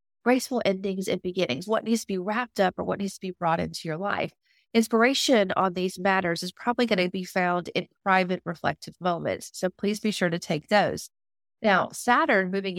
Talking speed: 200 wpm